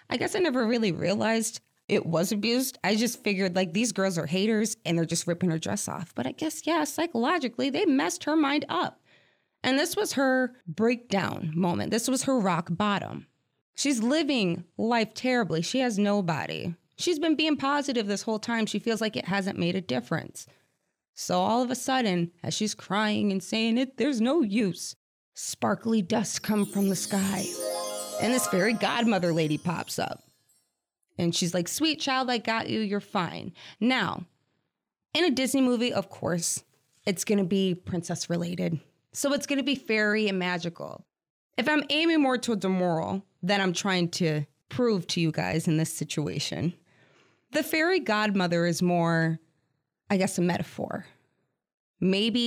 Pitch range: 175-250 Hz